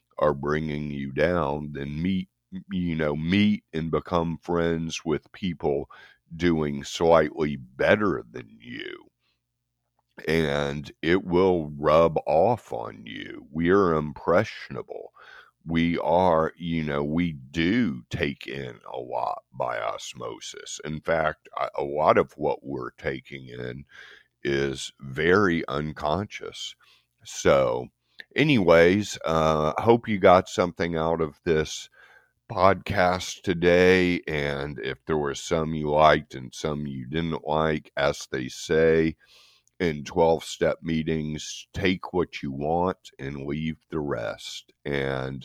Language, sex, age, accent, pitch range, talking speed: English, male, 50-69, American, 70-85 Hz, 120 wpm